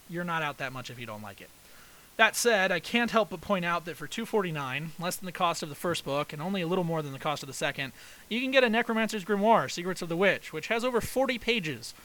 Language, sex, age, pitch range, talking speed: English, male, 30-49, 140-195 Hz, 275 wpm